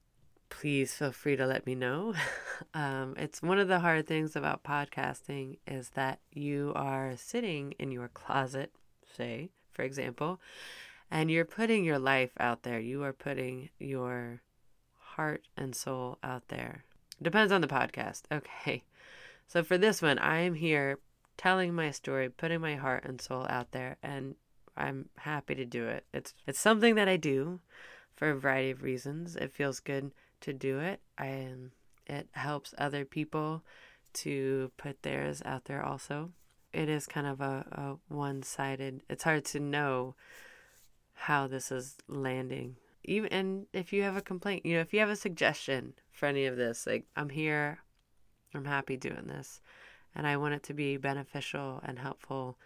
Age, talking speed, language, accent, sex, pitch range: 20-39, 170 wpm, English, American, female, 130-155 Hz